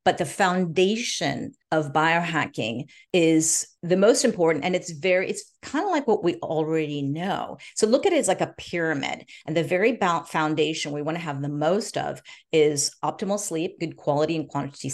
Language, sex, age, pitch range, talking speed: English, female, 40-59, 155-205 Hz, 185 wpm